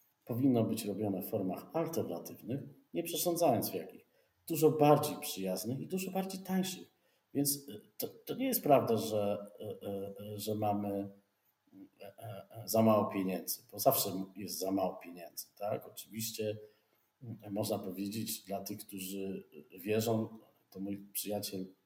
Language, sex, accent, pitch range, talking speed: Polish, male, native, 105-135 Hz, 125 wpm